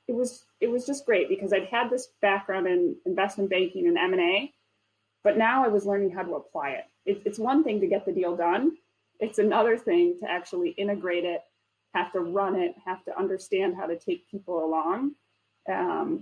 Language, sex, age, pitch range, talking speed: English, female, 20-39, 180-255 Hz, 205 wpm